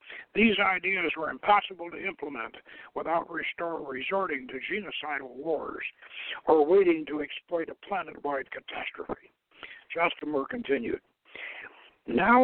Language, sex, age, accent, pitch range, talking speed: English, male, 60-79, American, 185-250 Hz, 105 wpm